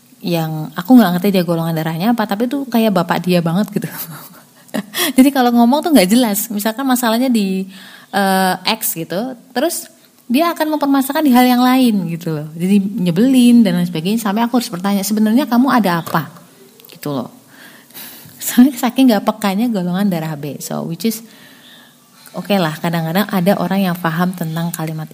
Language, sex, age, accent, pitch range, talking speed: Indonesian, female, 30-49, native, 180-245 Hz, 170 wpm